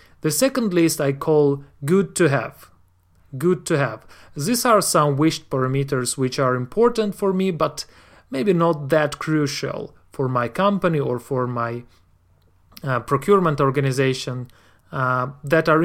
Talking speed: 145 wpm